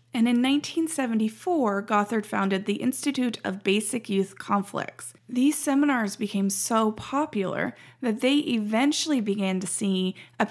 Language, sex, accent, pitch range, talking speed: English, female, American, 195-255 Hz, 130 wpm